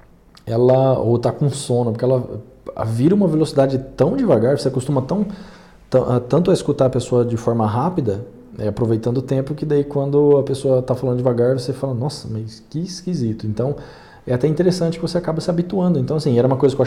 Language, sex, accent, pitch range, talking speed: Portuguese, male, Brazilian, 120-155 Hz, 205 wpm